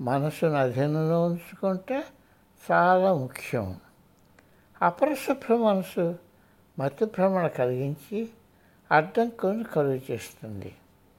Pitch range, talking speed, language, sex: 125-205 Hz, 70 wpm, Telugu, male